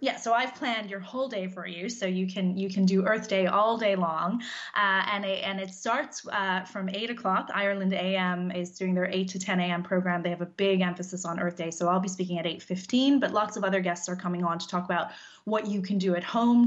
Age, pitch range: 20-39, 180-205 Hz